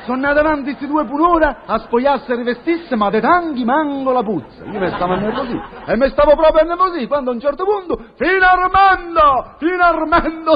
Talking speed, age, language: 195 wpm, 40-59, Italian